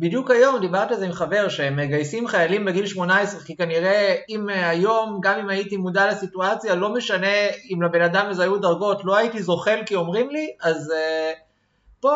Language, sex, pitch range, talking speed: Hebrew, male, 170-225 Hz, 185 wpm